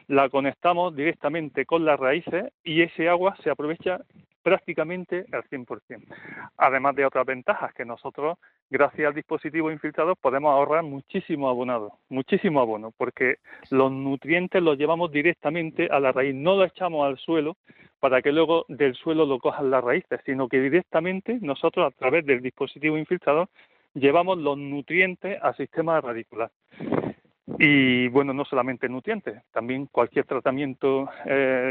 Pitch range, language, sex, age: 135-170 Hz, Spanish, male, 40-59